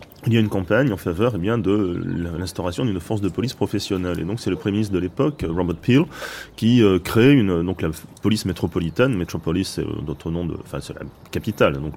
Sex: male